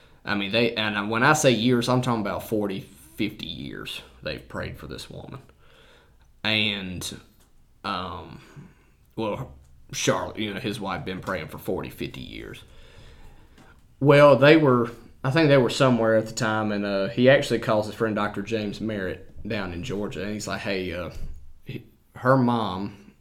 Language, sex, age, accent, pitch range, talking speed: English, male, 20-39, American, 95-115 Hz, 165 wpm